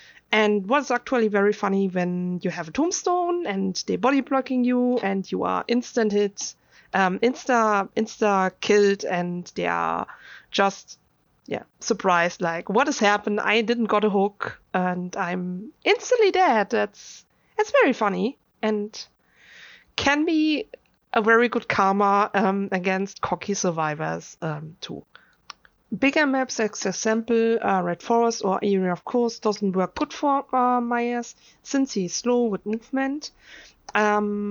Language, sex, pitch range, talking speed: English, female, 195-250 Hz, 145 wpm